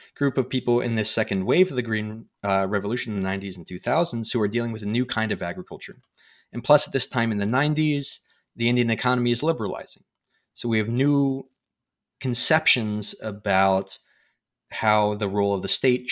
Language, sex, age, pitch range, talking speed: English, male, 20-39, 100-130 Hz, 195 wpm